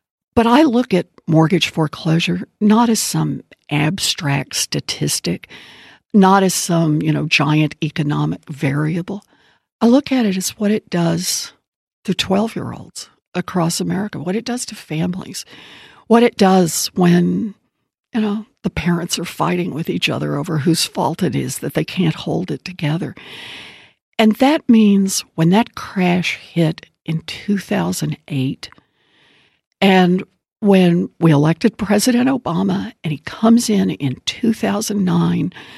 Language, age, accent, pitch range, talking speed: English, 60-79, American, 165-220 Hz, 135 wpm